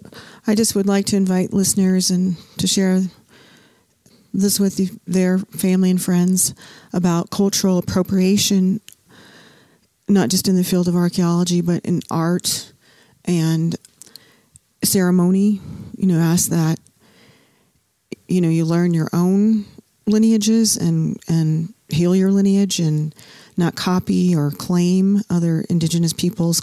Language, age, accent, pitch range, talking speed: English, 40-59, American, 170-195 Hz, 125 wpm